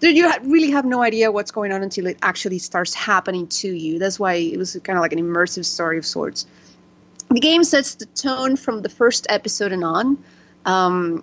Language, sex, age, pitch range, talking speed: English, female, 30-49, 175-215 Hz, 210 wpm